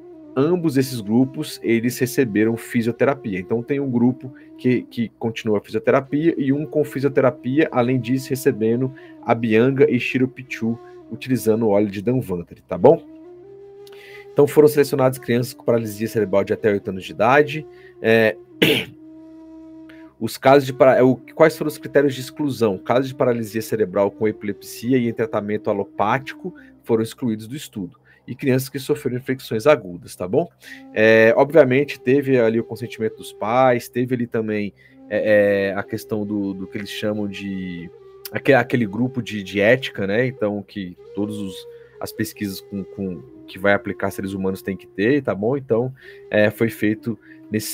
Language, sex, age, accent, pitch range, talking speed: Portuguese, male, 40-59, Brazilian, 110-145 Hz, 160 wpm